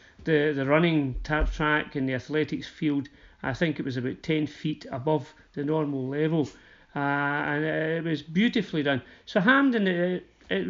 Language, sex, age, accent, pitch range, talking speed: English, male, 40-59, British, 135-160 Hz, 170 wpm